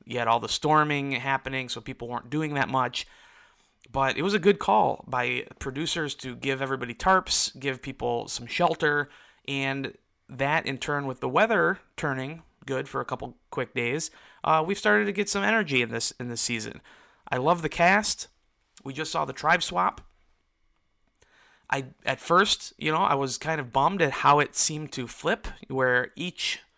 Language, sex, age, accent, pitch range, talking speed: English, male, 30-49, American, 125-155 Hz, 185 wpm